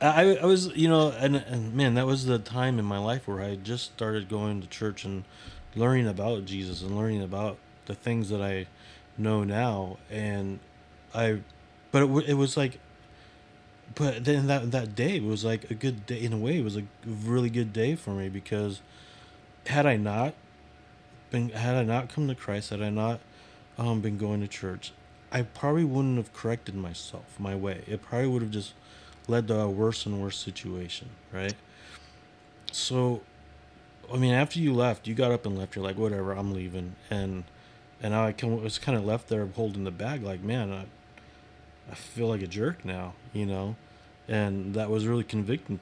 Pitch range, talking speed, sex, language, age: 95-120 Hz, 195 wpm, male, English, 30-49